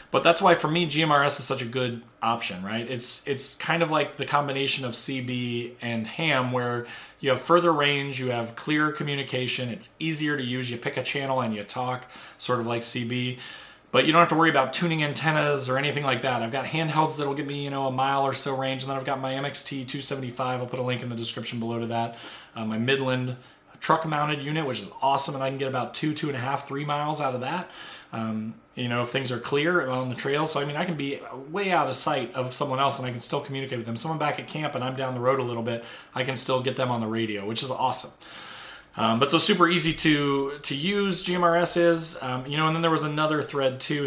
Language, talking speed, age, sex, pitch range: English, 255 wpm, 30-49, male, 125-155 Hz